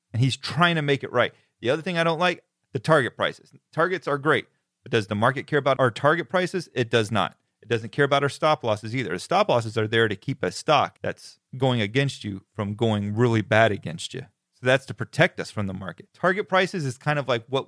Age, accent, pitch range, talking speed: 30-49, American, 110-145 Hz, 245 wpm